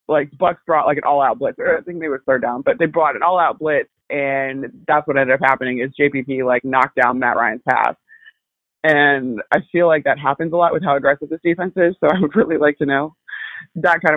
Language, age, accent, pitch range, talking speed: English, 20-39, American, 130-155 Hz, 250 wpm